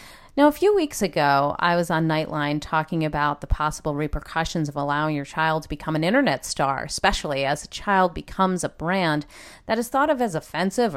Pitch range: 155-225 Hz